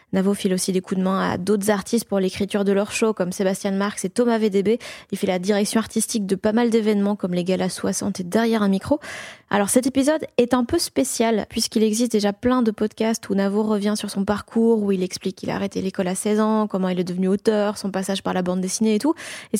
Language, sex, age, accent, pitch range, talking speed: French, female, 20-39, French, 200-230 Hz, 250 wpm